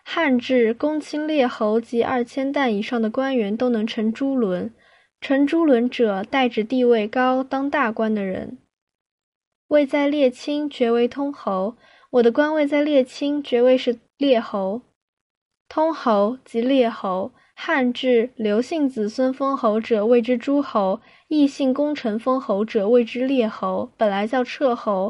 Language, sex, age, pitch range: Chinese, female, 10-29, 225-275 Hz